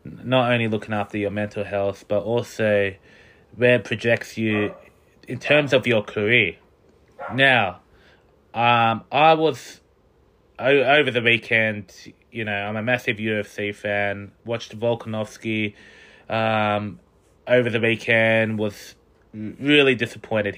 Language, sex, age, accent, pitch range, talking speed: English, male, 20-39, Australian, 105-120 Hz, 120 wpm